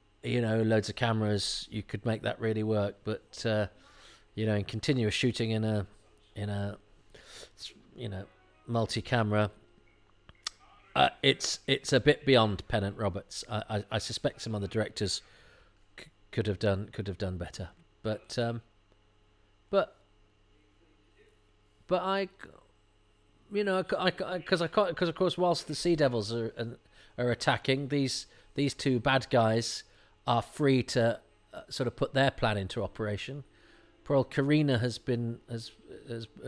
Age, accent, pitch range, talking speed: 40-59, British, 105-130 Hz, 150 wpm